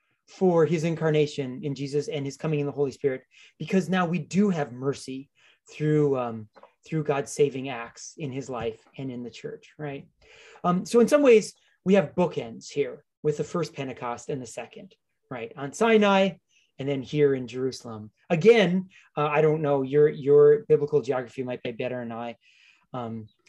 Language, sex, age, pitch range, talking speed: English, male, 30-49, 125-175 Hz, 180 wpm